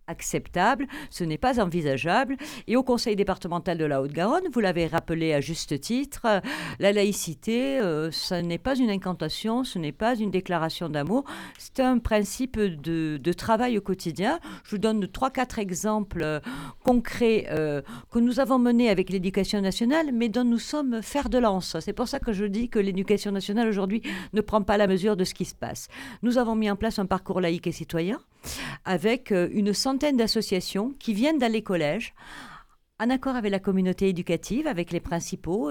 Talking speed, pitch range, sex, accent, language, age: 185 wpm, 175-235 Hz, female, French, French, 50-69